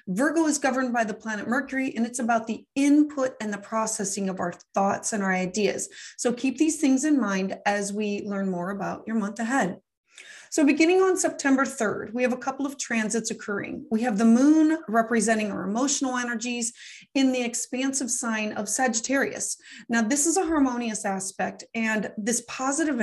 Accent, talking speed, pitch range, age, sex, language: American, 180 wpm, 210-260 Hz, 30-49, female, English